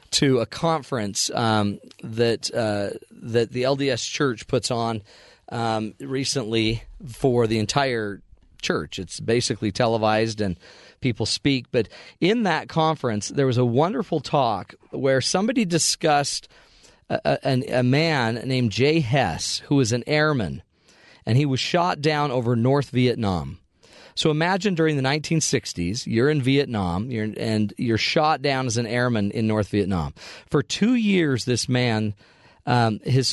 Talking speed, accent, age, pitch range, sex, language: 145 wpm, American, 40-59, 110-145 Hz, male, English